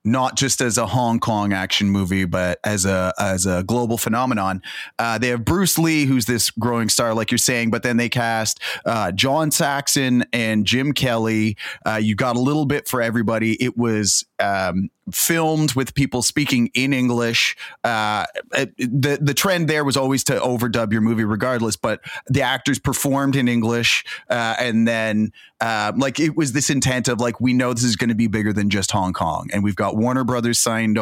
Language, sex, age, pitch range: English, male, 30-49, 100-130 Hz